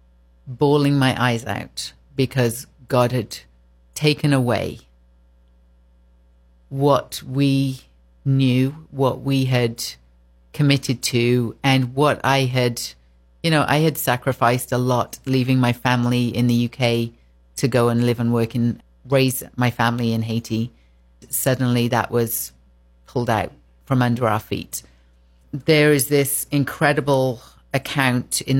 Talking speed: 130 wpm